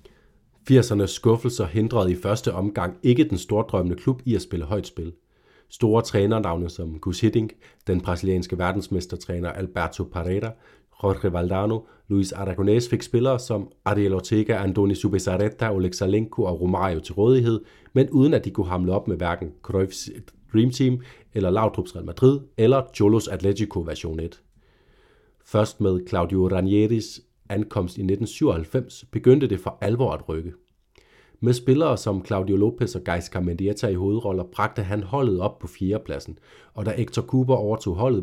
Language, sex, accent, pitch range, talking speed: Danish, male, native, 95-115 Hz, 155 wpm